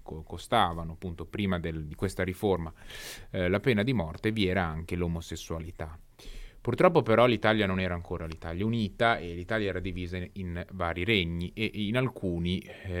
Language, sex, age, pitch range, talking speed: Italian, male, 30-49, 90-110 Hz, 155 wpm